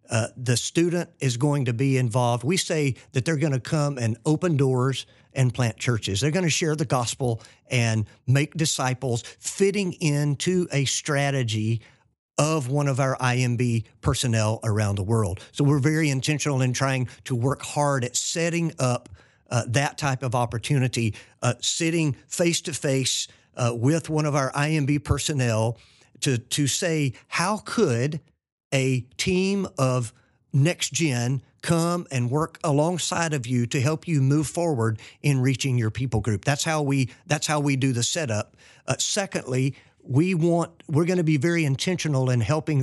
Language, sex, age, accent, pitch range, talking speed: English, male, 50-69, American, 120-150 Hz, 165 wpm